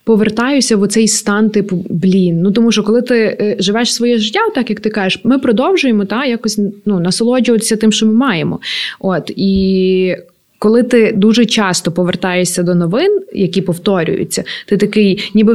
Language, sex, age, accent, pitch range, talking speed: Ukrainian, female, 20-39, native, 185-230 Hz, 160 wpm